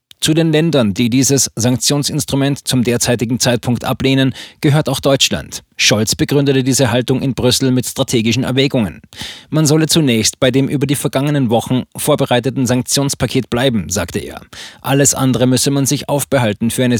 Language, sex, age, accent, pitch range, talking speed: German, male, 20-39, German, 120-140 Hz, 155 wpm